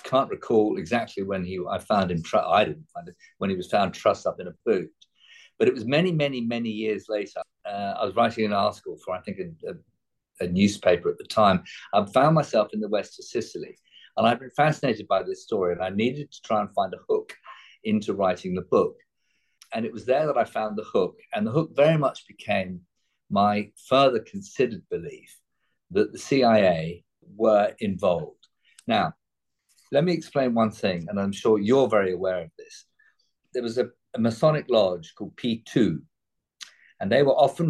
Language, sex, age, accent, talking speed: English, male, 50-69, British, 195 wpm